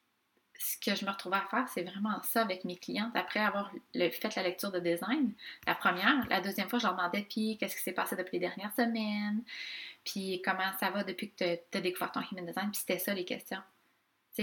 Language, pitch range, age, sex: French, 180-220 Hz, 20-39, female